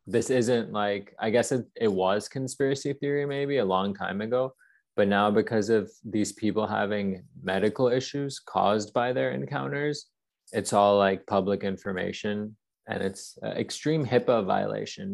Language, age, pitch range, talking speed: English, 20-39, 95-110 Hz, 150 wpm